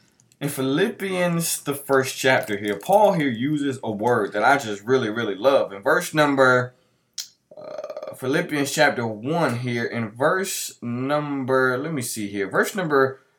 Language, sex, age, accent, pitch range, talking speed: English, male, 20-39, American, 120-150 Hz, 150 wpm